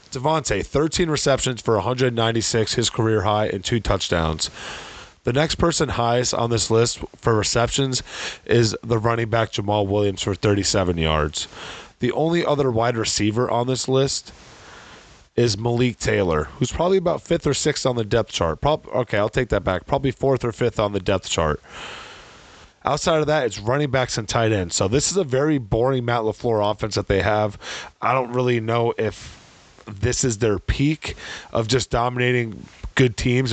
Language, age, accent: English, 30-49, American